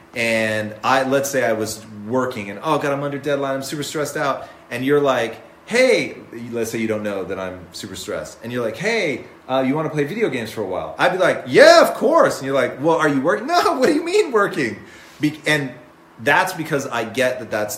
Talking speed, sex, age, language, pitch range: 235 wpm, male, 30-49, English, 105-135 Hz